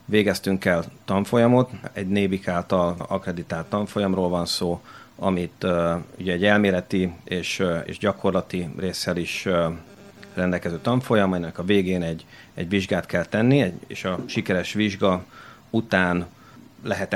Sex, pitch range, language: male, 90-110 Hz, Hungarian